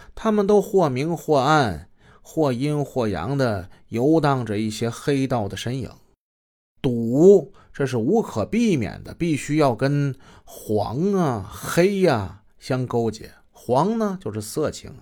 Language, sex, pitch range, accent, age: Chinese, male, 110-165 Hz, native, 30-49